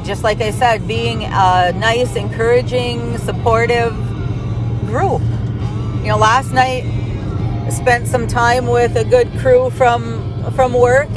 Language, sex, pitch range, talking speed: English, female, 110-120 Hz, 135 wpm